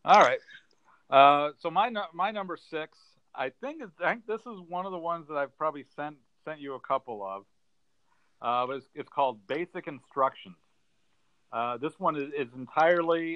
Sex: male